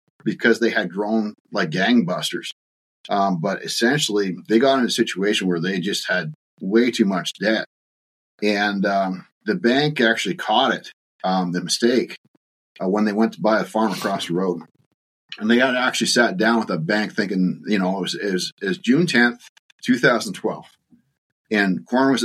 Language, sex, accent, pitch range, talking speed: English, male, American, 90-115 Hz, 185 wpm